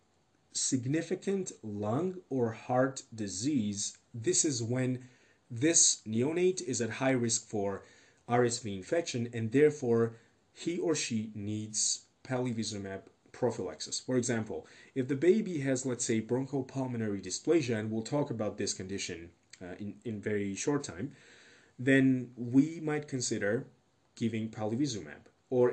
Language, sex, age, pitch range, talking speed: English, male, 30-49, 105-135 Hz, 125 wpm